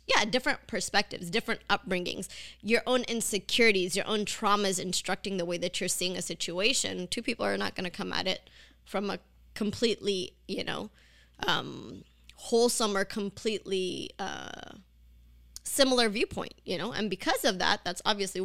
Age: 20-39